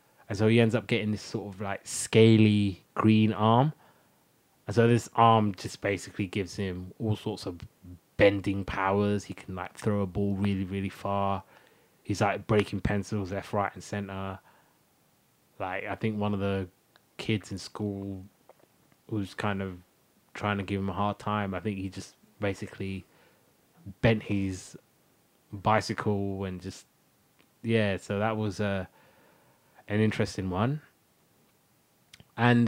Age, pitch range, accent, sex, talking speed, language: 20-39, 100-115 Hz, British, male, 150 wpm, English